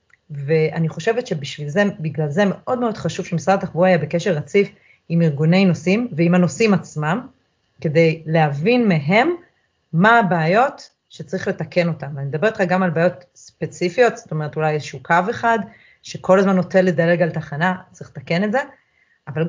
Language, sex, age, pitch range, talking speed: Hebrew, female, 30-49, 155-195 Hz, 155 wpm